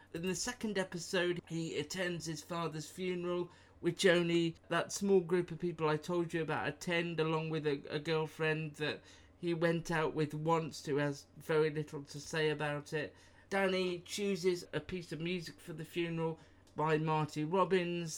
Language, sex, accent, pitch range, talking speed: English, male, British, 145-170 Hz, 170 wpm